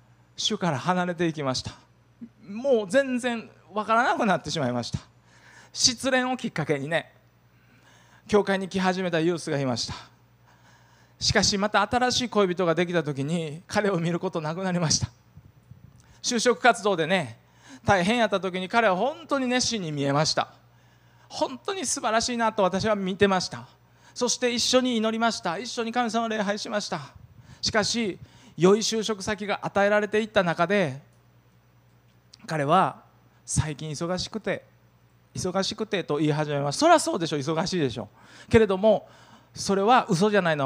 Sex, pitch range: male, 140-215 Hz